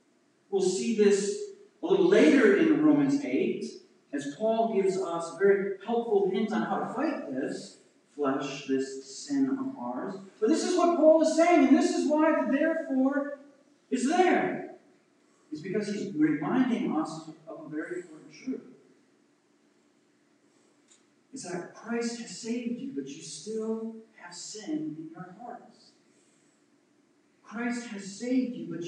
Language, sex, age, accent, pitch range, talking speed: English, male, 40-59, American, 205-305 Hz, 150 wpm